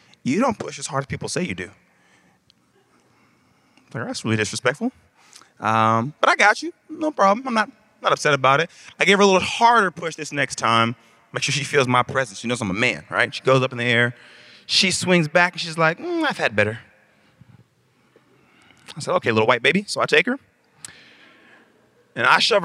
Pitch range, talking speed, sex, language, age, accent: 135-190 Hz, 205 wpm, male, English, 20-39, American